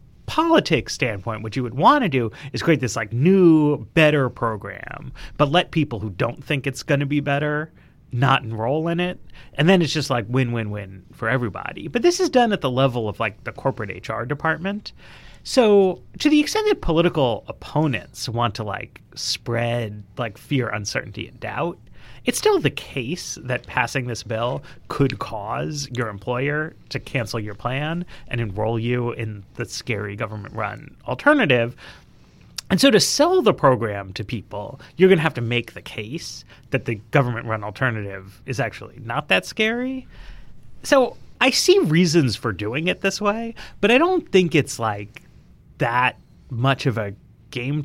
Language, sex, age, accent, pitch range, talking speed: English, male, 30-49, American, 115-170 Hz, 175 wpm